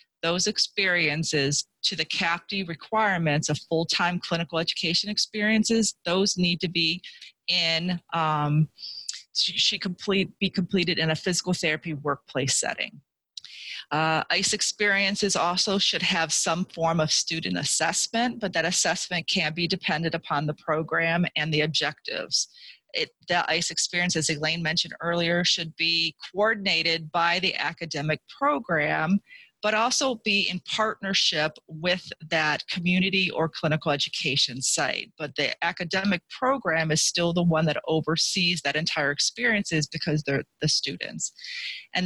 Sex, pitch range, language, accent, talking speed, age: female, 160-195 Hz, English, American, 135 wpm, 40-59